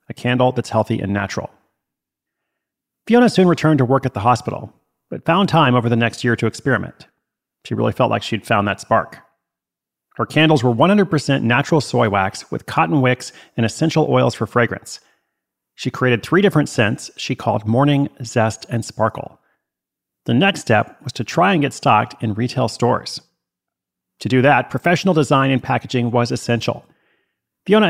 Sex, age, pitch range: male, 40-59, 115-150 Hz